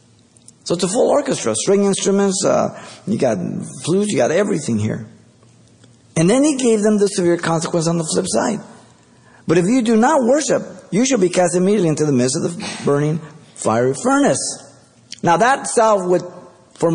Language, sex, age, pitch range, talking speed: English, male, 50-69, 120-190 Hz, 180 wpm